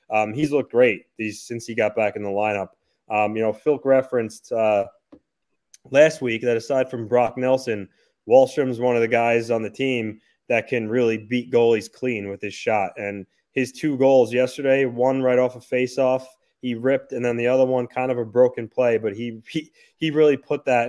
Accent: American